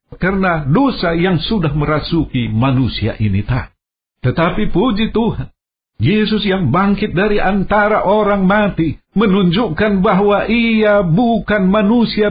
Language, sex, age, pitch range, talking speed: Indonesian, male, 50-69, 150-210 Hz, 110 wpm